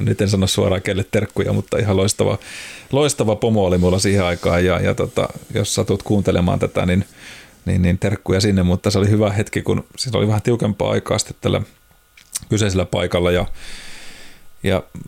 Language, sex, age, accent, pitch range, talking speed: Finnish, male, 30-49, native, 95-110 Hz, 170 wpm